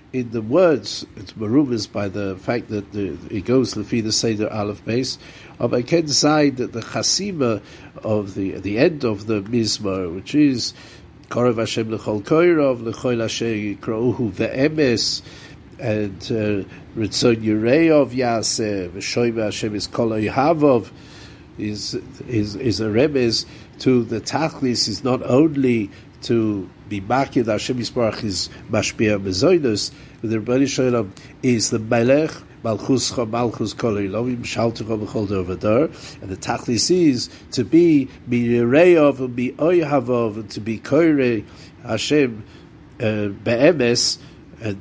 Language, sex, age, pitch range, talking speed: English, male, 60-79, 105-130 Hz, 105 wpm